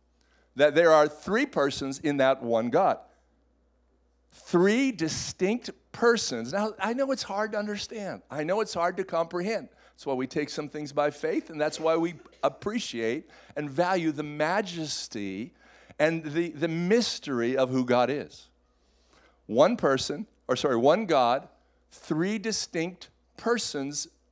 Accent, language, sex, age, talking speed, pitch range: American, English, male, 50-69, 145 wpm, 110-175 Hz